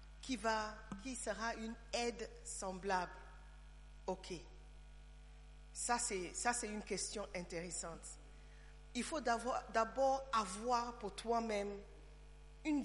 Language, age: English, 50-69